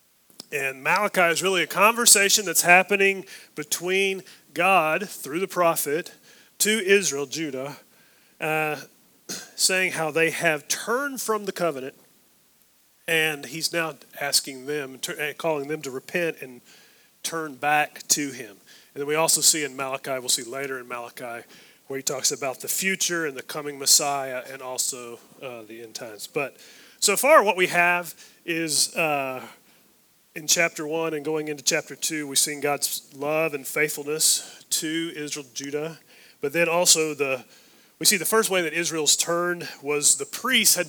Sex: male